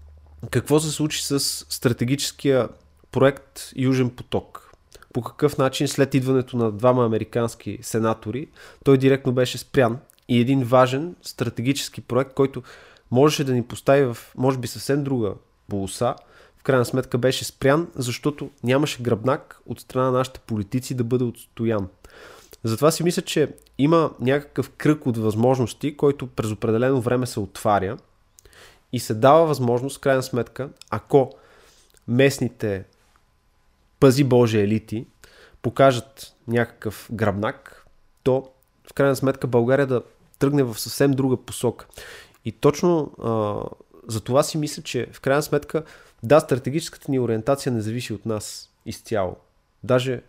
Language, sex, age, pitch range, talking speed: Bulgarian, male, 20-39, 115-140 Hz, 135 wpm